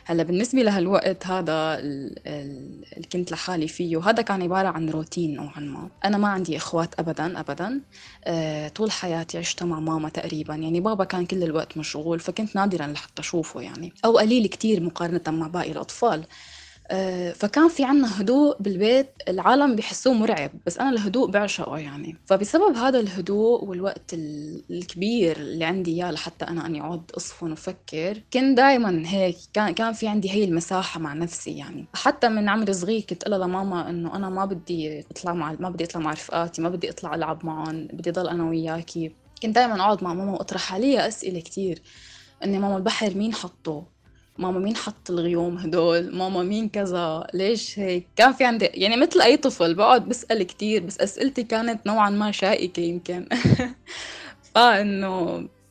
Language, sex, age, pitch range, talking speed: Arabic, female, 20-39, 165-210 Hz, 165 wpm